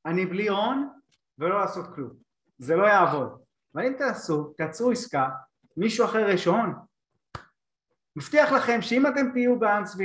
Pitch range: 135-205 Hz